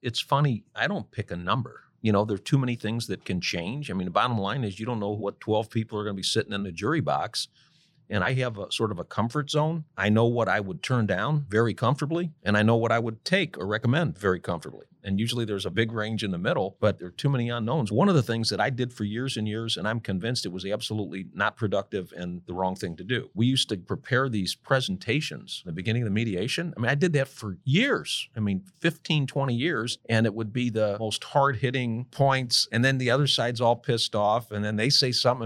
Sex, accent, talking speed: male, American, 255 wpm